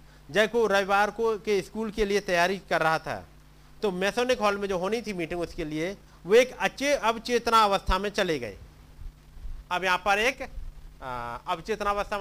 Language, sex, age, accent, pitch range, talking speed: Hindi, male, 50-69, native, 190-225 Hz, 170 wpm